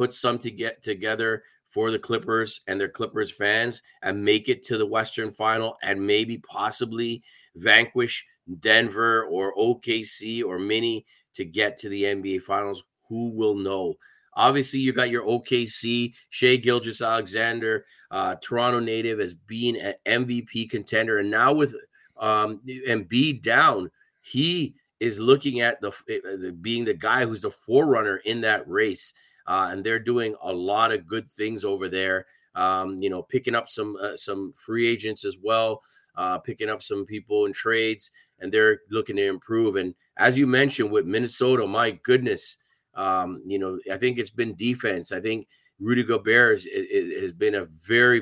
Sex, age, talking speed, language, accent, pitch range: male, 30-49, 165 wpm, English, American, 105-120 Hz